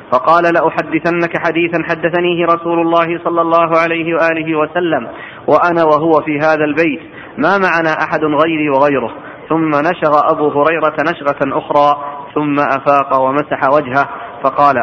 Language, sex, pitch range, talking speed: Arabic, male, 150-170 Hz, 130 wpm